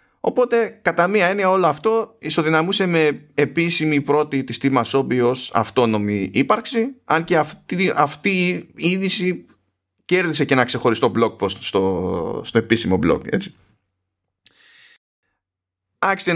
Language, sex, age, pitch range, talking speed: Greek, male, 20-39, 110-160 Hz, 115 wpm